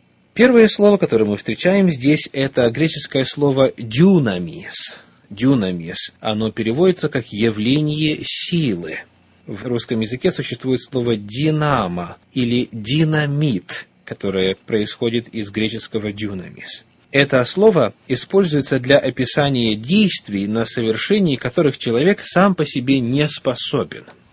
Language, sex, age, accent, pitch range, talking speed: Russian, male, 30-49, native, 115-160 Hz, 110 wpm